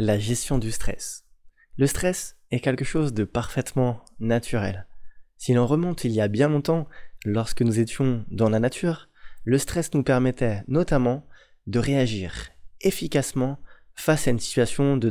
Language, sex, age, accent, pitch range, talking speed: French, male, 20-39, French, 115-145 Hz, 155 wpm